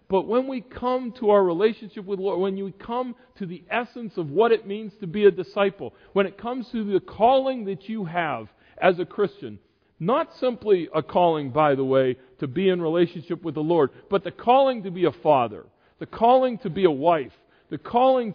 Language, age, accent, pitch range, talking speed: English, 50-69, American, 165-230 Hz, 215 wpm